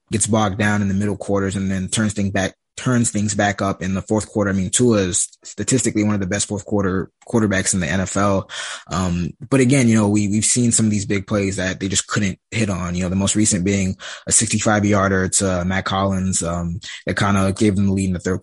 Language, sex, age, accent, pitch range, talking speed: English, male, 20-39, American, 95-110 Hz, 250 wpm